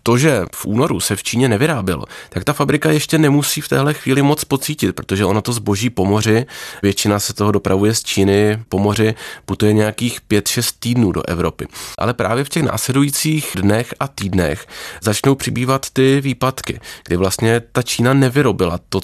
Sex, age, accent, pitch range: male, 20-39, native, 95-120 Hz